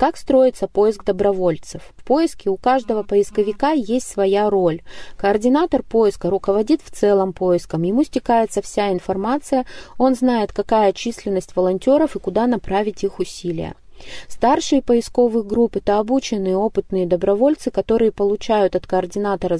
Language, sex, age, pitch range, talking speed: Russian, female, 20-39, 190-240 Hz, 130 wpm